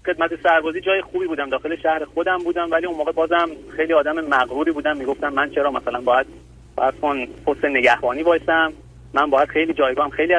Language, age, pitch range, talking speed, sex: Persian, 30-49, 140-185 Hz, 180 wpm, male